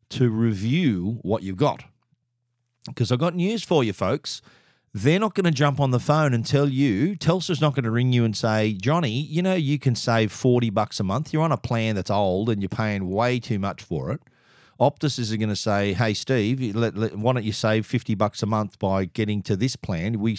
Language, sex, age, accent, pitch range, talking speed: English, male, 40-59, Australian, 105-140 Hz, 230 wpm